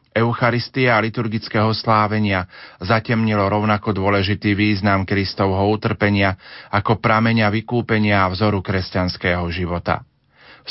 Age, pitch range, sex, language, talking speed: 40-59, 100-115 Hz, male, Slovak, 100 wpm